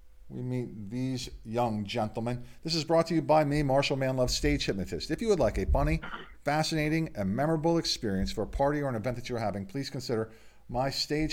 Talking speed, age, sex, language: 205 wpm, 50-69, male, English